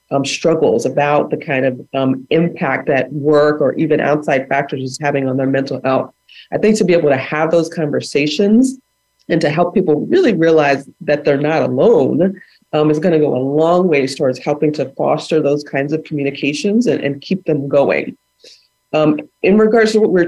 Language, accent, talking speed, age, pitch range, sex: English, American, 200 wpm, 30-49, 145-175 Hz, female